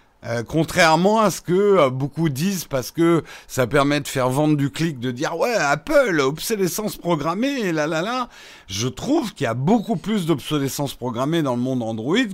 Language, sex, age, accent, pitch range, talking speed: French, male, 50-69, French, 130-170 Hz, 180 wpm